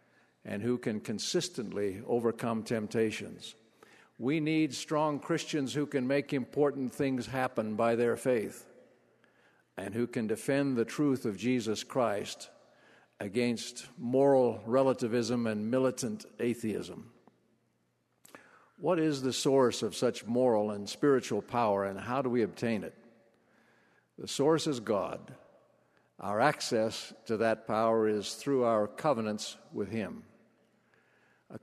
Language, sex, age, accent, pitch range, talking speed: English, male, 60-79, American, 110-135 Hz, 125 wpm